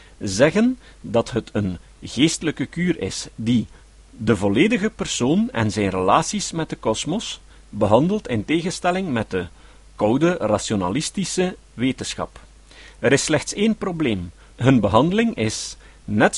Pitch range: 110-180 Hz